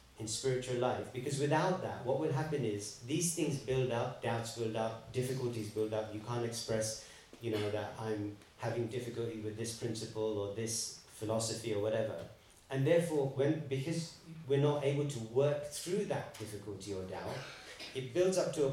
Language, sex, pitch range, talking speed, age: English, male, 110-140 Hz, 180 wpm, 40-59